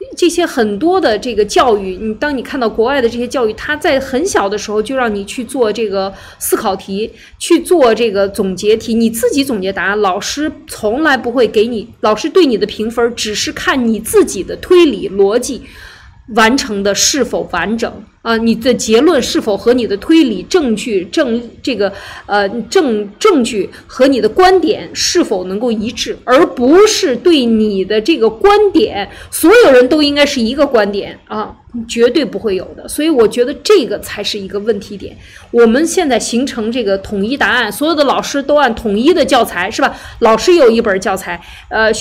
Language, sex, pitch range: Chinese, female, 210-300 Hz